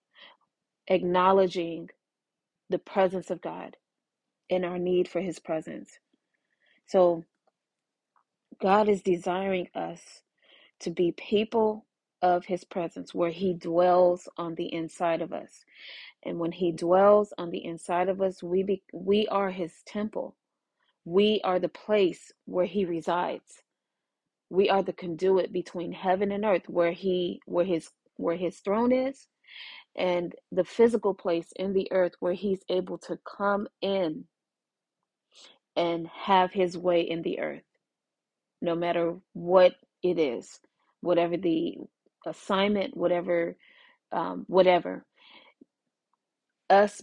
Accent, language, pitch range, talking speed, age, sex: American, English, 170-195 Hz, 130 wpm, 30-49, female